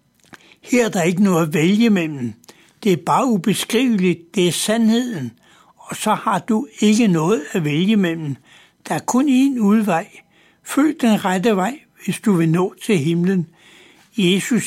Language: Danish